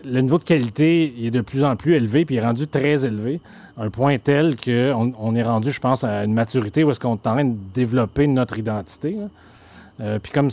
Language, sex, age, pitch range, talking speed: French, male, 30-49, 110-140 Hz, 235 wpm